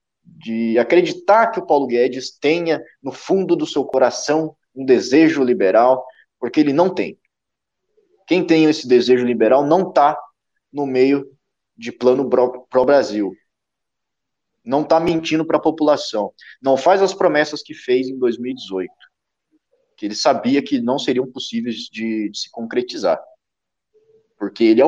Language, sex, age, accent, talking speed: Portuguese, male, 20-39, Brazilian, 145 wpm